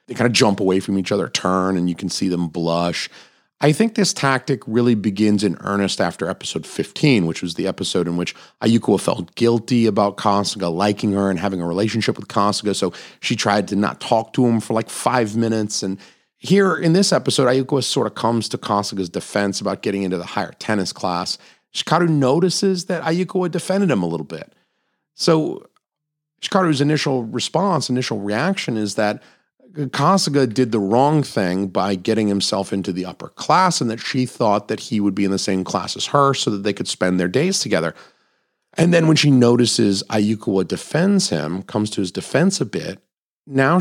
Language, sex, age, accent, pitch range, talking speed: English, male, 40-59, American, 100-140 Hz, 195 wpm